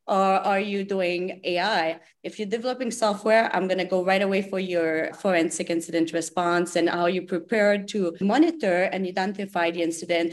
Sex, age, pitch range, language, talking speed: female, 30-49, 175-220 Hz, English, 175 wpm